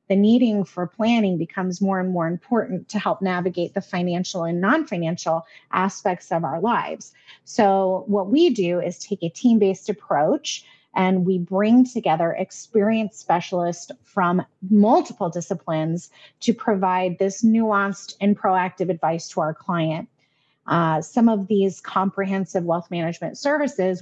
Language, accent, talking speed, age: English, American, 140 wpm, 30-49